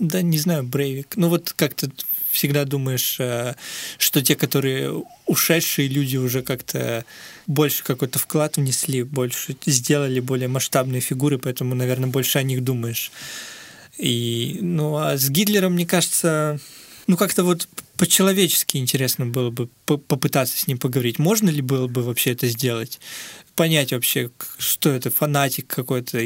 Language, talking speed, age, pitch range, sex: Russian, 140 wpm, 20-39, 125-155 Hz, male